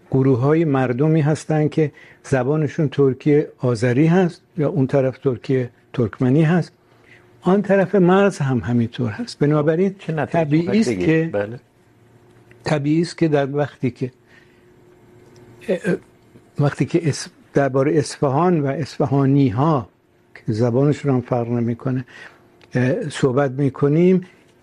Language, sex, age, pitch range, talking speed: Urdu, male, 60-79, 130-160 Hz, 115 wpm